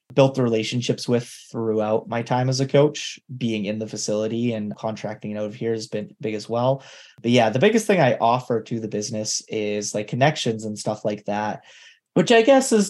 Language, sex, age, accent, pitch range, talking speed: English, male, 20-39, American, 110-145 Hz, 210 wpm